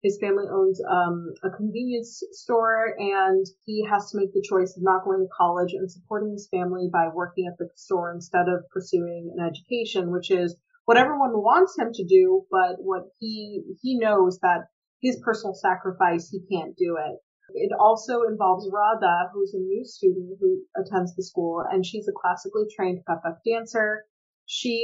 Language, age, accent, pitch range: English, 30-49, American, 180-220 Hz